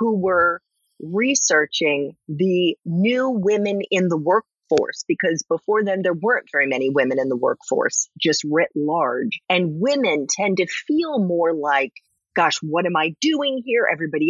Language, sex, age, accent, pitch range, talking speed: English, female, 40-59, American, 170-235 Hz, 155 wpm